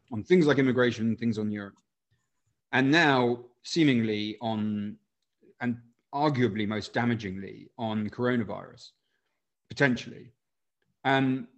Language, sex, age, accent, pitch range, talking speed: English, male, 30-49, British, 115-145 Hz, 100 wpm